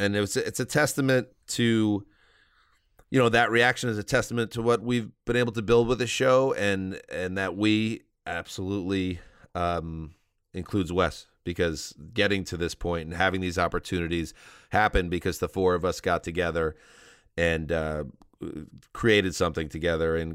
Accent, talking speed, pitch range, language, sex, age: American, 160 wpm, 85-115 Hz, English, male, 30-49